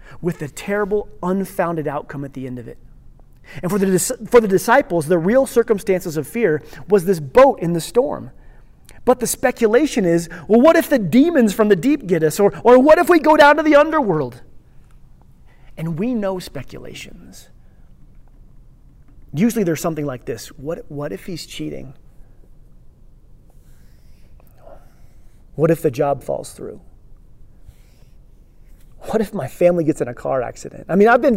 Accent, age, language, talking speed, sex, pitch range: American, 30-49, English, 160 wpm, male, 150-210 Hz